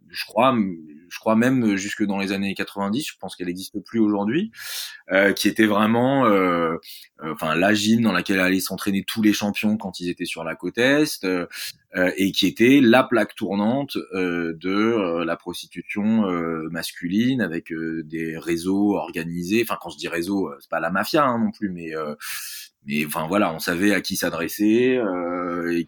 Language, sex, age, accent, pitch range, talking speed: French, male, 20-39, French, 85-105 Hz, 190 wpm